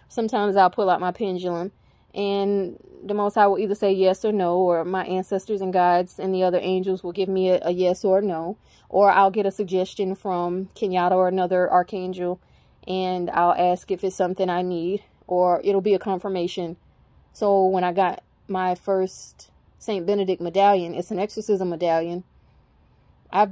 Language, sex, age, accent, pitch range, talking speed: English, female, 20-39, American, 180-200 Hz, 180 wpm